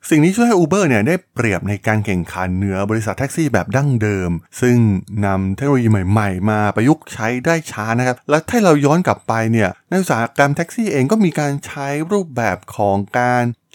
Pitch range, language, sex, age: 100-140 Hz, Thai, male, 20-39